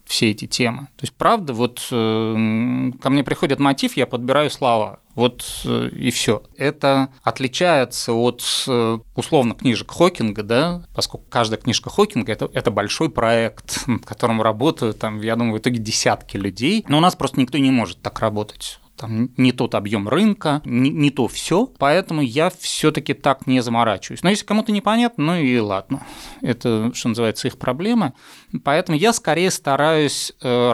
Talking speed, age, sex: 165 wpm, 30-49, male